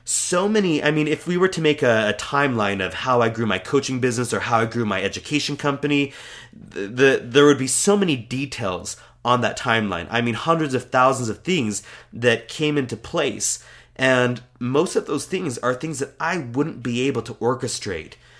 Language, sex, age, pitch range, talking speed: English, male, 30-49, 110-145 Hz, 200 wpm